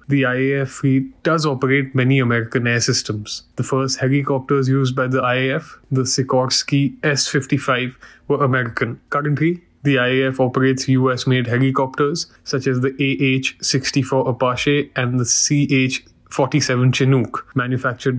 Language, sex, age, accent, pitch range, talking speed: English, male, 20-39, Indian, 130-145 Hz, 125 wpm